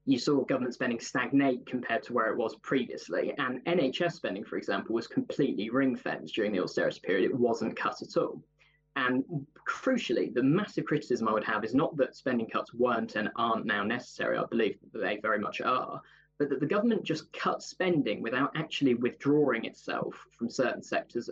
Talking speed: 190 wpm